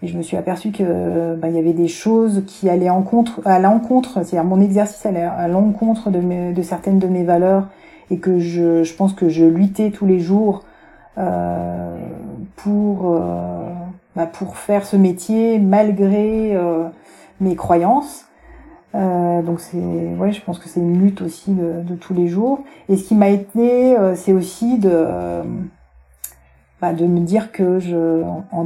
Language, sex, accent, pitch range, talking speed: French, female, French, 175-200 Hz, 180 wpm